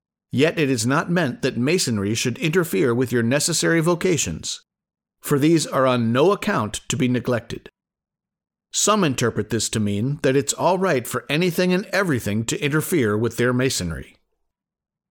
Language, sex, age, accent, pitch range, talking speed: English, male, 50-69, American, 120-160 Hz, 160 wpm